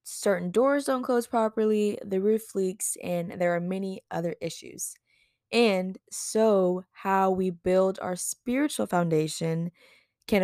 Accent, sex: American, female